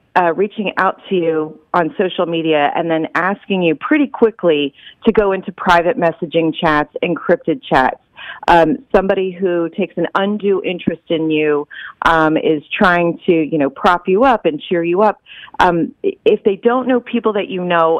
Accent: American